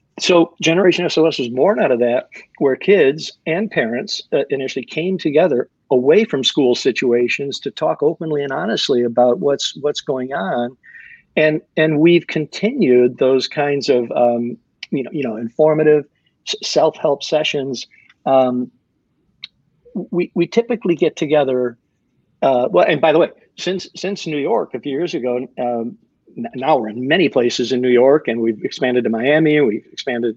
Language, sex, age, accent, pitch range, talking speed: English, male, 50-69, American, 125-170 Hz, 160 wpm